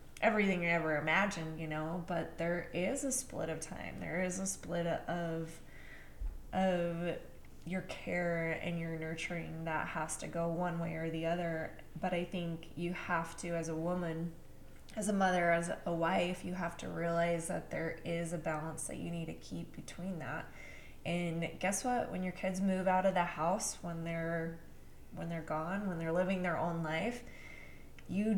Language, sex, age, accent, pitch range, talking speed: English, female, 20-39, American, 160-180 Hz, 185 wpm